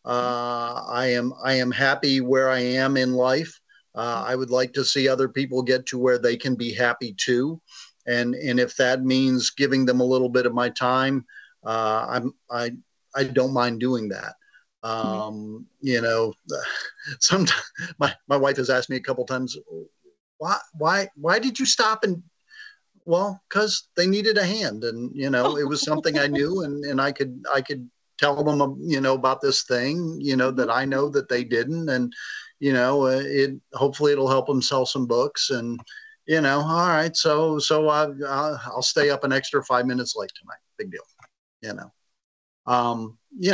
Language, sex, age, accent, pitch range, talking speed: English, male, 40-59, American, 120-145 Hz, 190 wpm